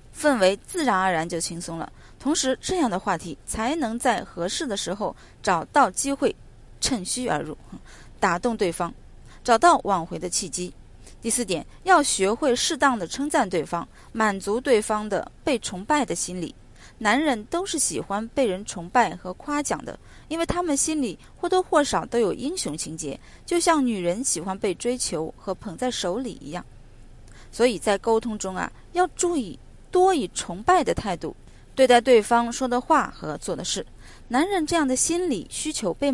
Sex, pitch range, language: female, 185-280 Hz, Chinese